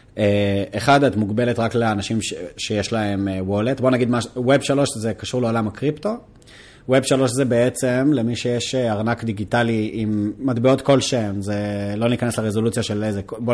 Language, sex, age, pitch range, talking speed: Hebrew, male, 30-49, 105-130 Hz, 160 wpm